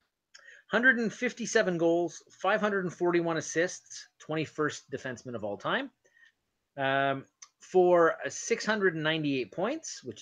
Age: 30-49